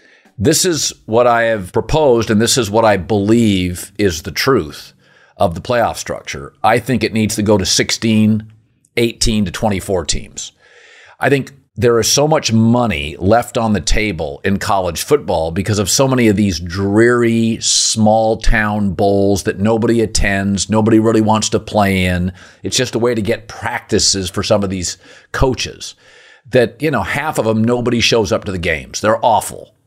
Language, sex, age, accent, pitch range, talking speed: English, male, 50-69, American, 100-120 Hz, 180 wpm